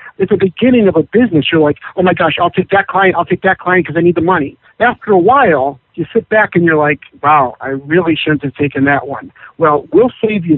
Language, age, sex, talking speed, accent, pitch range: English, 60-79, male, 255 wpm, American, 150-200 Hz